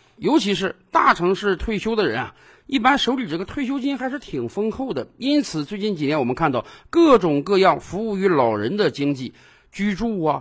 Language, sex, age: Chinese, male, 50-69